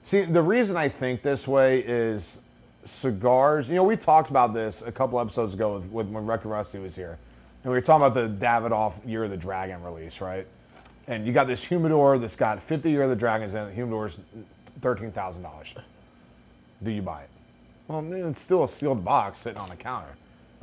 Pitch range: 105-135 Hz